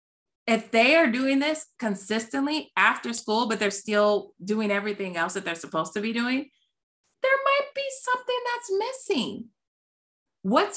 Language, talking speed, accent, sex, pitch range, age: English, 150 wpm, American, female, 210-310 Hz, 30-49